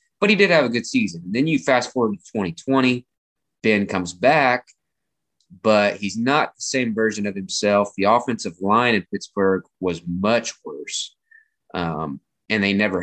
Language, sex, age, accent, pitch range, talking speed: English, male, 20-39, American, 95-115 Hz, 165 wpm